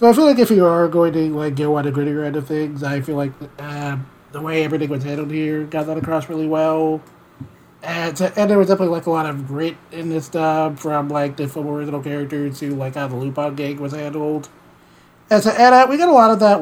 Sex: male